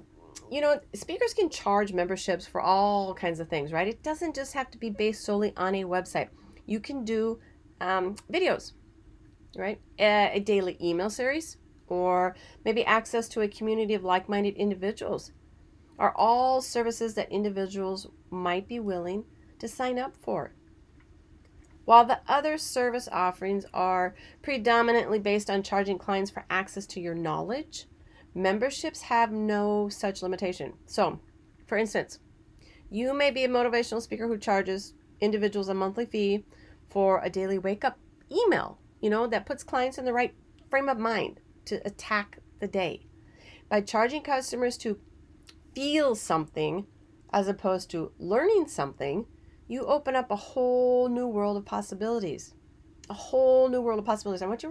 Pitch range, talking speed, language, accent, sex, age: 190-245 Hz, 155 wpm, English, American, female, 40-59